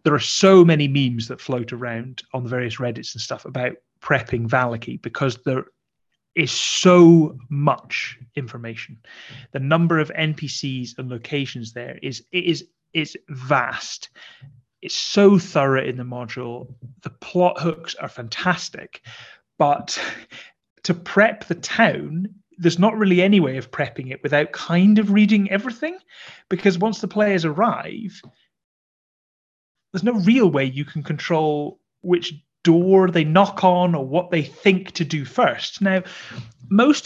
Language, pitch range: English, 130-180 Hz